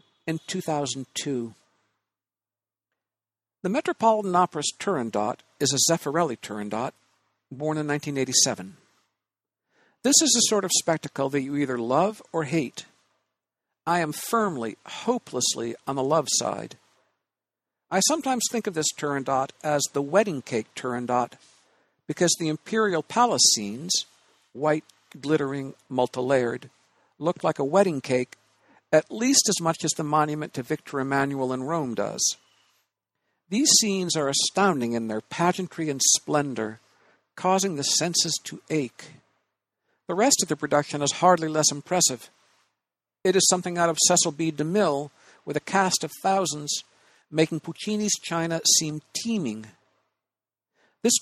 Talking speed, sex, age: 130 wpm, male, 60-79